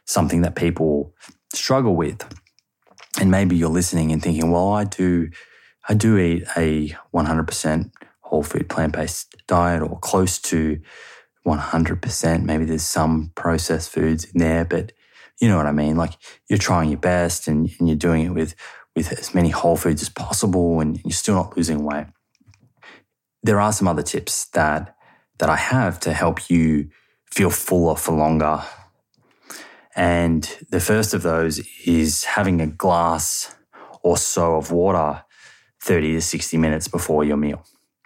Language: English